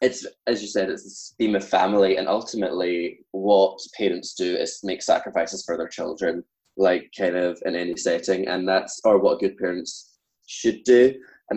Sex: male